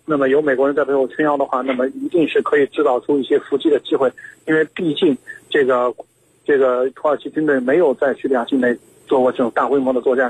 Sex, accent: male, native